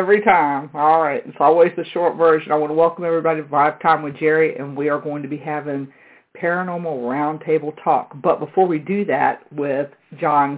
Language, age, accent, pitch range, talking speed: English, 50-69, American, 150-175 Hz, 205 wpm